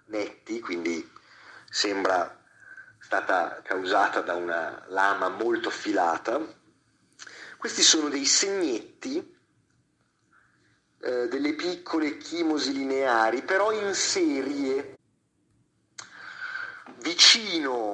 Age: 40-59